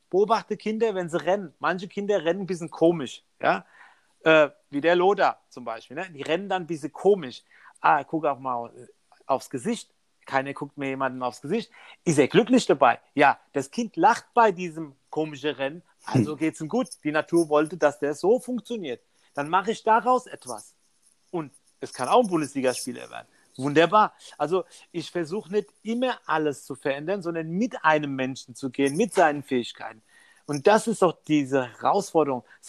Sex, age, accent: male, 40-59, German